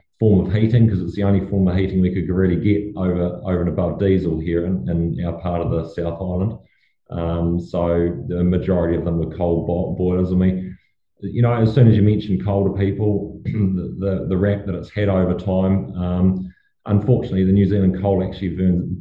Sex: male